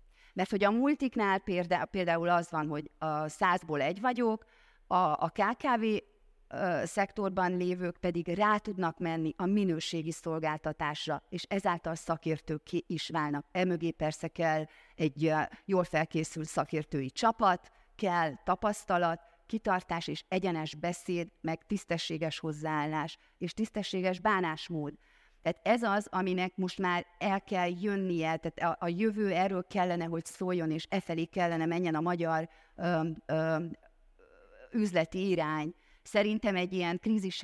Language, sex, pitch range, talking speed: Hungarian, female, 160-195 Hz, 130 wpm